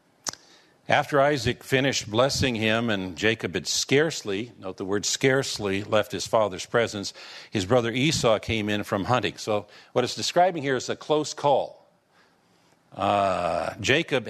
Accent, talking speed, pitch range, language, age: American, 145 wpm, 110-165 Hz, English, 50-69